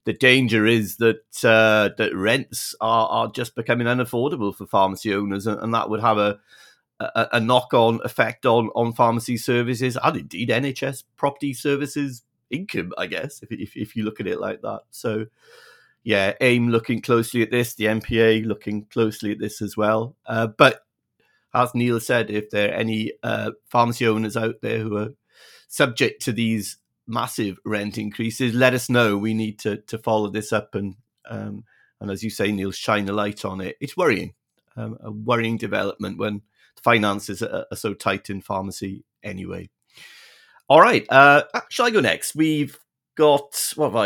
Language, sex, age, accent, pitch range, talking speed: English, male, 40-59, British, 105-120 Hz, 180 wpm